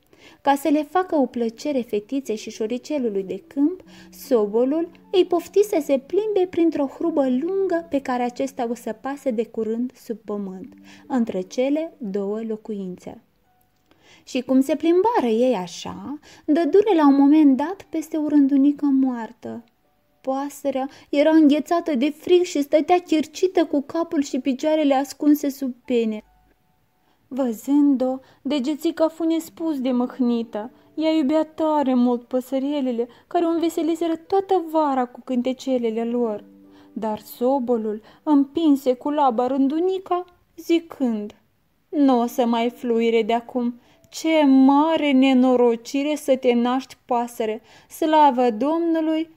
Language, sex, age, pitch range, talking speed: Romanian, female, 20-39, 245-315 Hz, 125 wpm